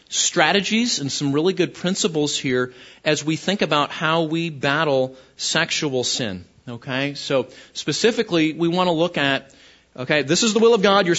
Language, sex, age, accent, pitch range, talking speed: English, male, 30-49, American, 130-165 Hz, 170 wpm